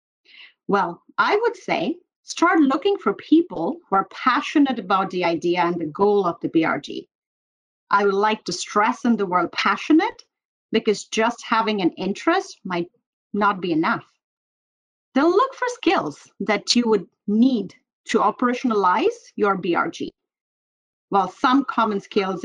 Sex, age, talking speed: female, 30-49, 145 wpm